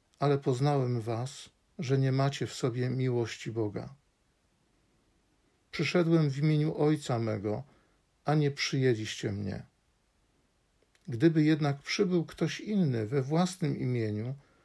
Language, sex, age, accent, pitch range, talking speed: Polish, male, 50-69, native, 120-150 Hz, 110 wpm